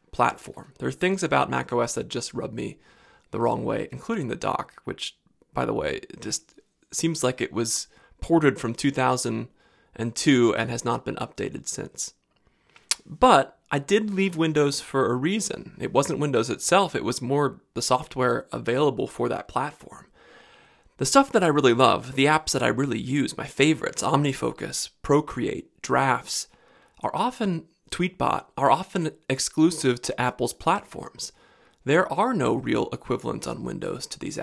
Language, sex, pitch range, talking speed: English, male, 125-175 Hz, 155 wpm